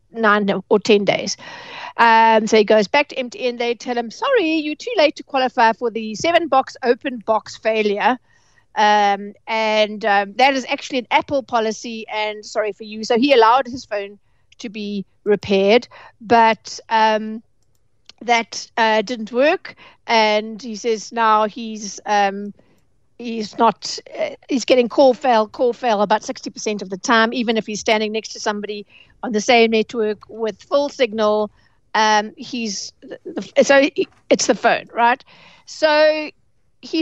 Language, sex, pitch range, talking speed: English, female, 210-265 Hz, 155 wpm